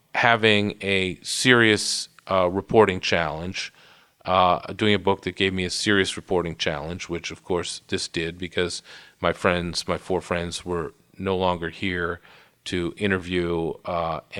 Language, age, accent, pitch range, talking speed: English, 40-59, American, 90-105 Hz, 145 wpm